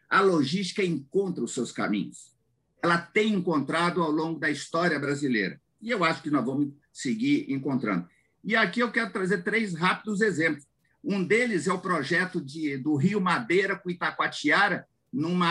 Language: Portuguese